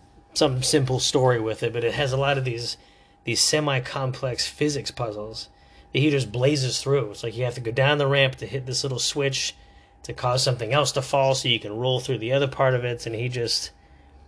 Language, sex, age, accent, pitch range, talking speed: English, male, 30-49, American, 105-130 Hz, 225 wpm